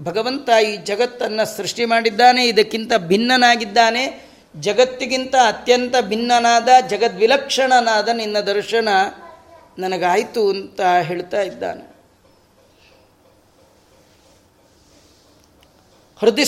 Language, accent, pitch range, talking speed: Kannada, native, 220-255 Hz, 65 wpm